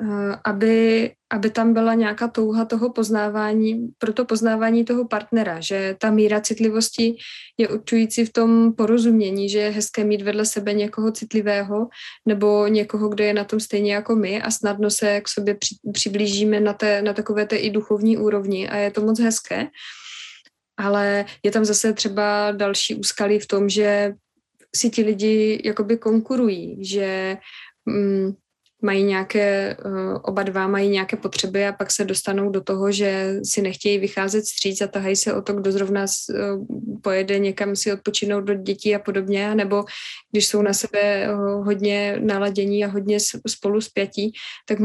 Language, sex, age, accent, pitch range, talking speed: Czech, female, 20-39, native, 200-215 Hz, 160 wpm